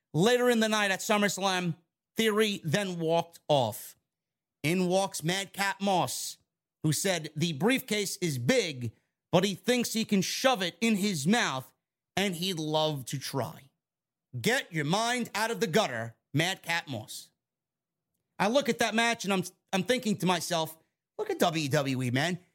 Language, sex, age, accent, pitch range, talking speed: English, male, 30-49, American, 170-245 Hz, 160 wpm